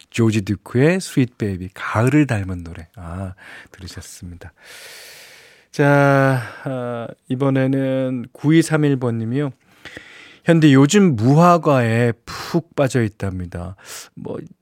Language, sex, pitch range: Korean, male, 105-160 Hz